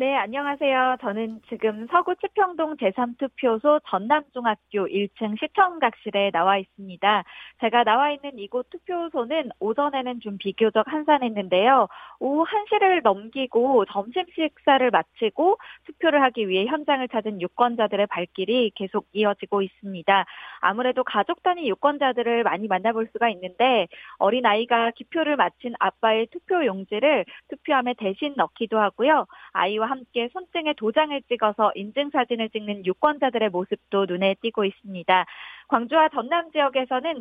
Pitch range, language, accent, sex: 210-280 Hz, Korean, native, female